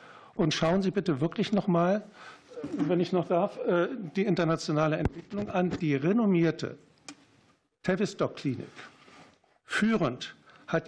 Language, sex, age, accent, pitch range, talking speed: German, male, 60-79, German, 150-185 Hz, 115 wpm